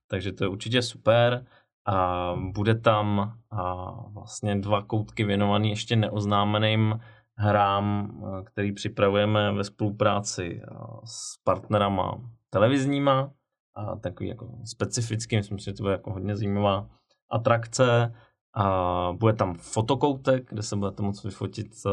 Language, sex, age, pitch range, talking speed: Czech, male, 20-39, 100-115 Hz, 125 wpm